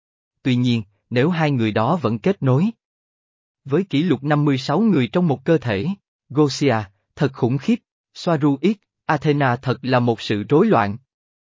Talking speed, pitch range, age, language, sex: 155 wpm, 115-165 Hz, 20-39, Vietnamese, male